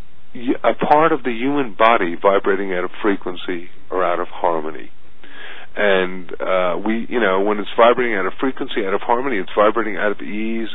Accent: American